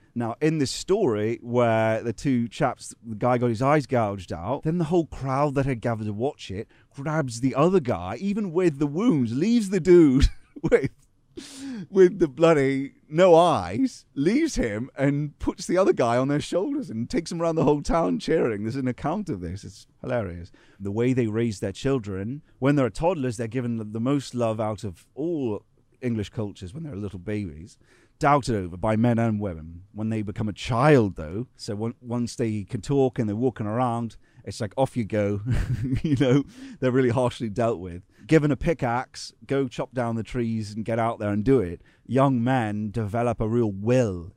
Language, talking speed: English, 195 wpm